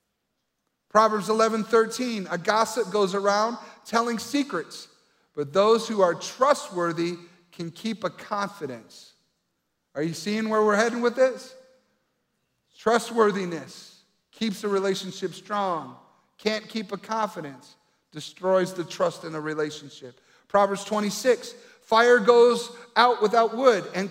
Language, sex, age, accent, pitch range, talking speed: English, male, 50-69, American, 175-225 Hz, 120 wpm